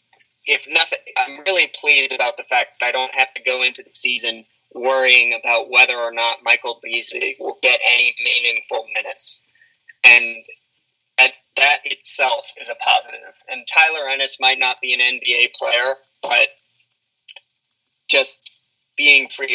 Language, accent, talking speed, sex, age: English, American, 145 wpm, male, 30-49